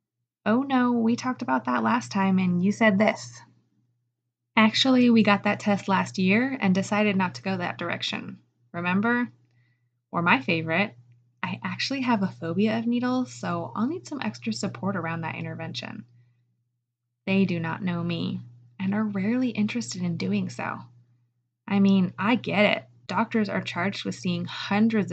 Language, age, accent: English, 20-39, American